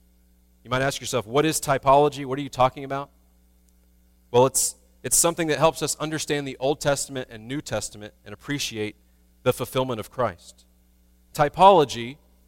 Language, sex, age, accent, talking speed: English, male, 30-49, American, 160 wpm